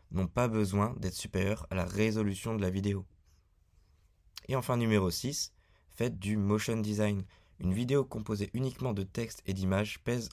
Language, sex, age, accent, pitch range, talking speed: French, male, 20-39, French, 90-115 Hz, 165 wpm